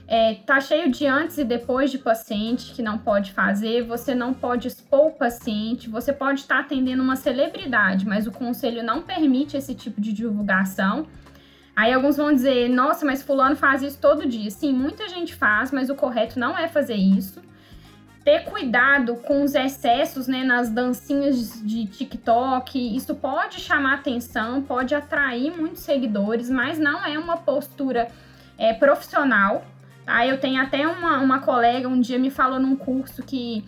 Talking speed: 165 wpm